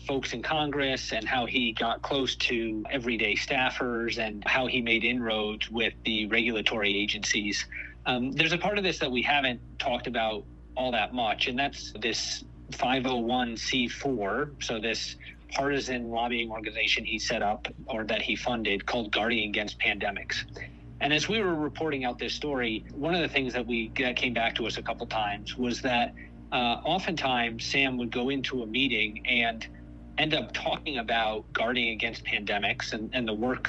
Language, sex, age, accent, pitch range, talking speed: English, male, 40-59, American, 110-130 Hz, 175 wpm